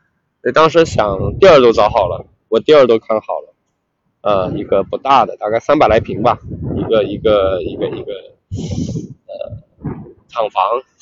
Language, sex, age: Chinese, male, 20-39